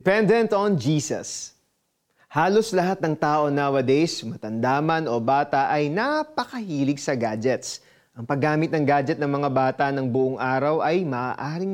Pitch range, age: 140-205 Hz, 30-49